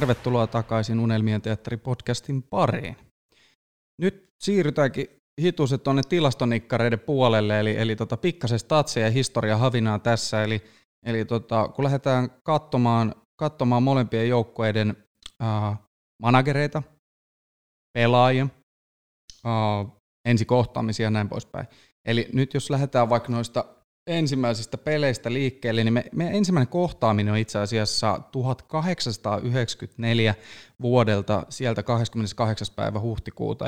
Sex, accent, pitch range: male, native, 110-130 Hz